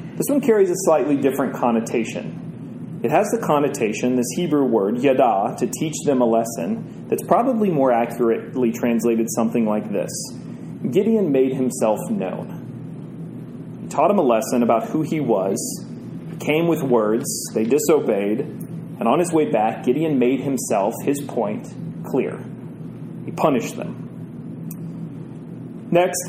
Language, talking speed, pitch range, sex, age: English, 140 wpm, 120-150 Hz, male, 30-49